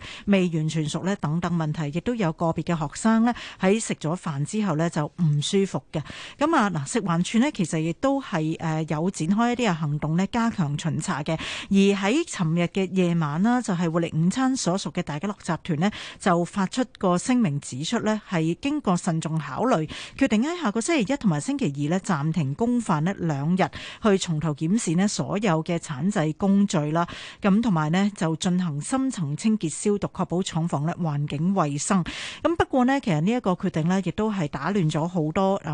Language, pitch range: Chinese, 160-205 Hz